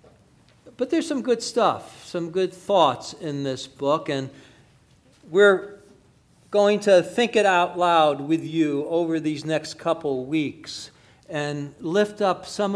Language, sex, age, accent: English, male, 50-69, American